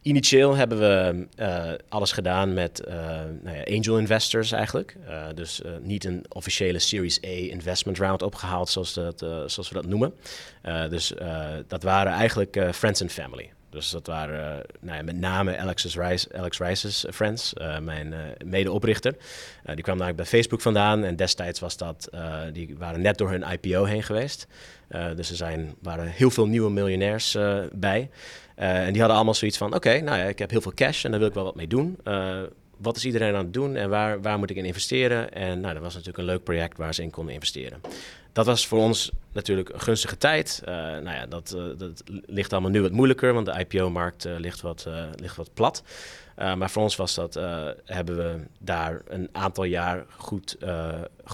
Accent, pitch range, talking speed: Dutch, 85-105 Hz, 210 wpm